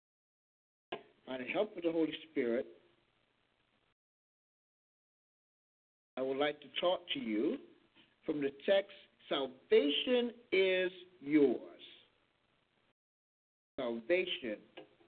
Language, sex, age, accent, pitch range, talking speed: English, male, 50-69, American, 140-220 Hz, 85 wpm